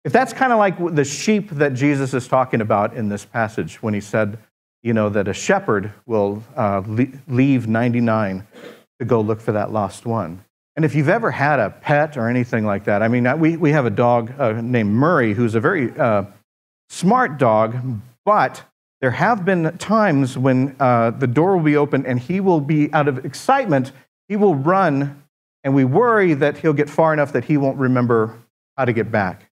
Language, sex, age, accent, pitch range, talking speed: English, male, 50-69, American, 115-175 Hz, 200 wpm